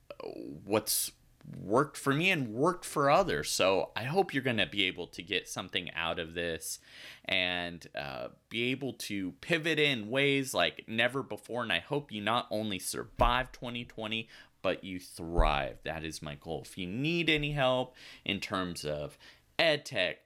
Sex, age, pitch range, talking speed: male, 30-49, 90-140 Hz, 170 wpm